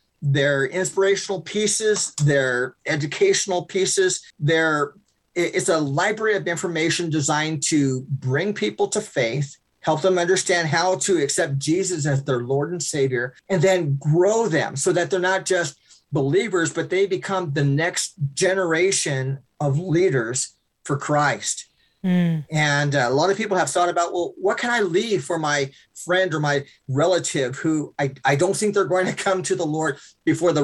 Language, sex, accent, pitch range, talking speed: English, male, American, 140-185 Hz, 165 wpm